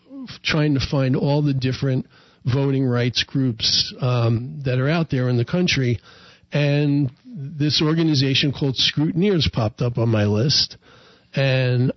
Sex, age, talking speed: male, 50-69, 140 wpm